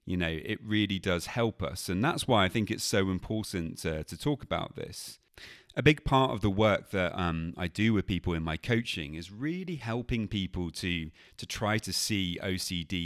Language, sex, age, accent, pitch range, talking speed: English, male, 30-49, British, 85-115 Hz, 205 wpm